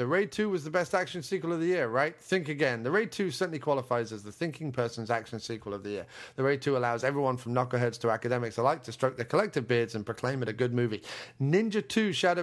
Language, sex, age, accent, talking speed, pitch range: English, male, 30-49, British, 250 wpm, 115-145 Hz